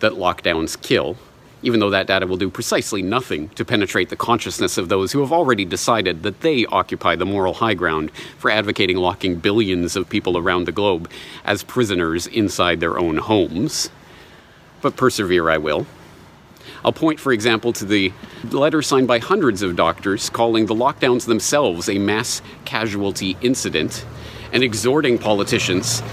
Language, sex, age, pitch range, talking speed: English, male, 40-59, 100-125 Hz, 160 wpm